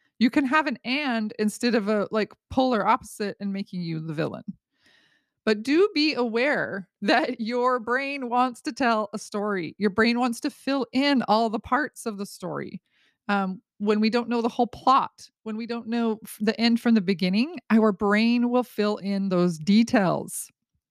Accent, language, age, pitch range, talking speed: American, English, 30-49, 200-245 Hz, 185 wpm